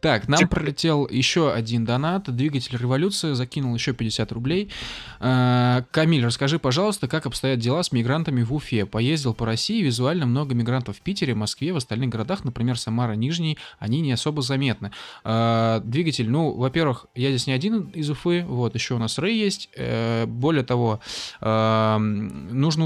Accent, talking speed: native, 155 wpm